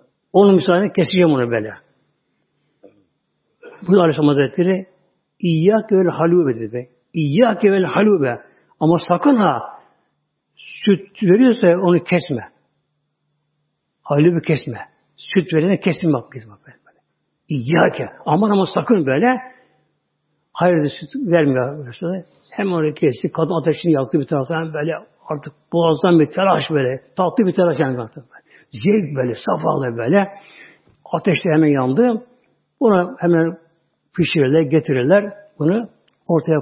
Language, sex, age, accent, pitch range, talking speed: Turkish, male, 60-79, native, 150-195 Hz, 110 wpm